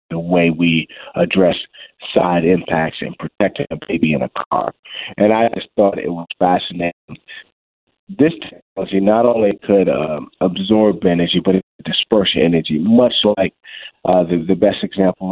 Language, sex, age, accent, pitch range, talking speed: English, male, 30-49, American, 85-105 Hz, 155 wpm